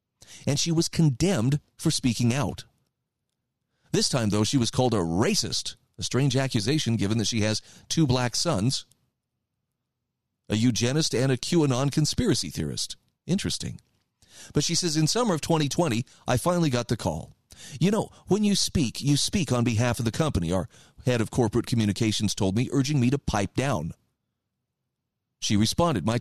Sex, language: male, English